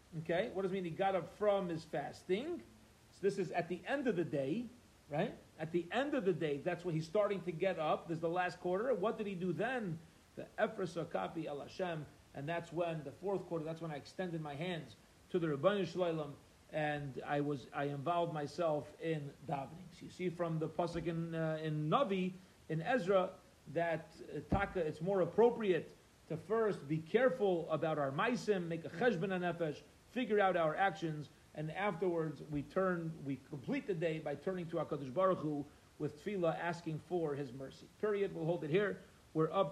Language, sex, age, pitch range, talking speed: English, male, 40-59, 155-190 Hz, 200 wpm